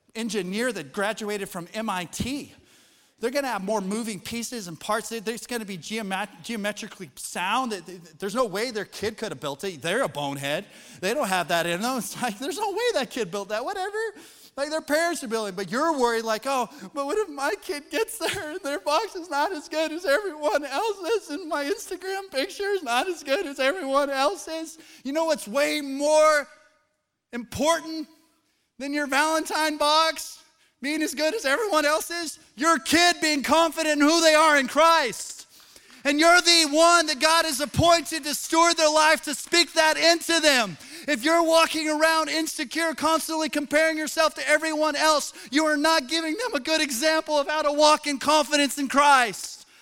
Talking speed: 190 wpm